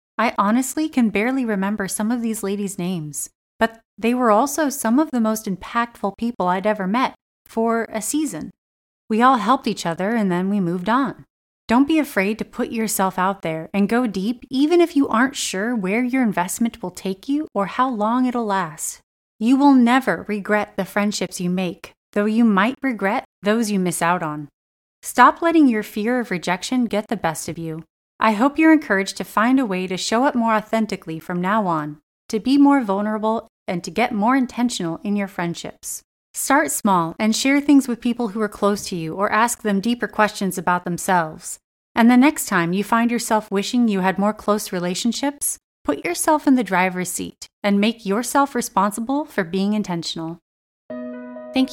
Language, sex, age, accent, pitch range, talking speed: English, female, 30-49, American, 190-245 Hz, 190 wpm